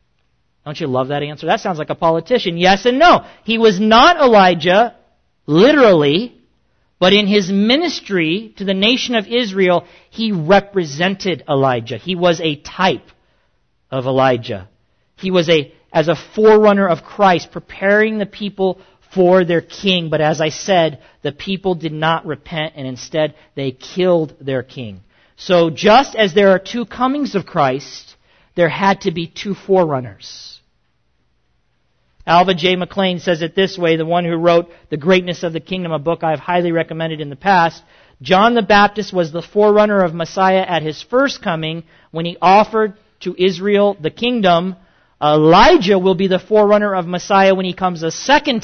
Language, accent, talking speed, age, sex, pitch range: English, American, 170 wpm, 40-59, male, 155-200 Hz